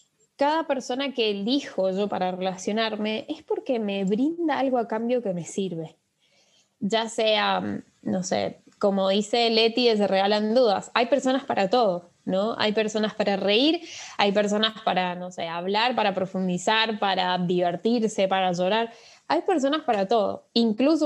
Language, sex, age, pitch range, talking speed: Spanish, female, 10-29, 200-250 Hz, 150 wpm